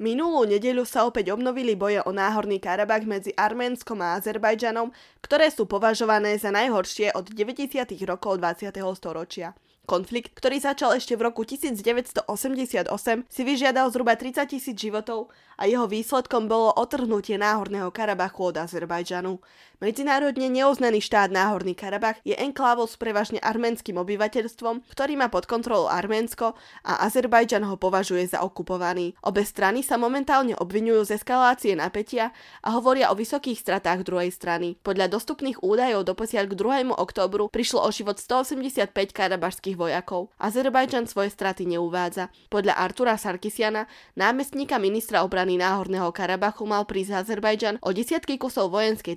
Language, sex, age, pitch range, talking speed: Slovak, female, 20-39, 190-240 Hz, 140 wpm